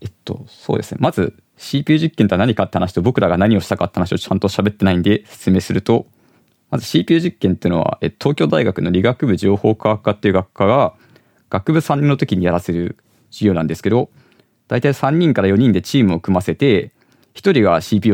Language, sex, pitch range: Japanese, male, 95-130 Hz